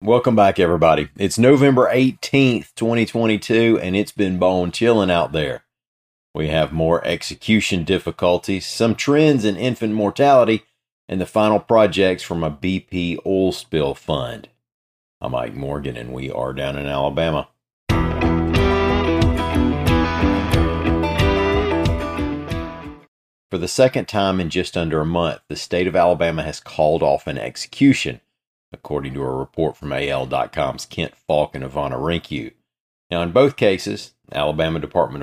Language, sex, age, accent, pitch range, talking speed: English, male, 40-59, American, 80-105 Hz, 135 wpm